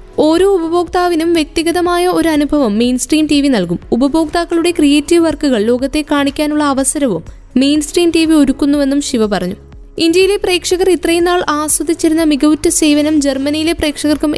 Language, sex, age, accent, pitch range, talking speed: Malayalam, female, 20-39, native, 275-325 Hz, 125 wpm